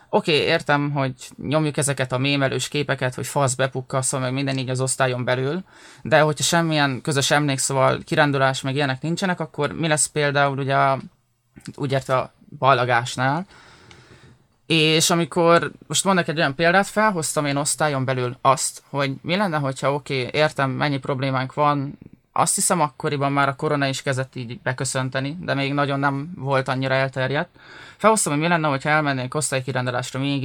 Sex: male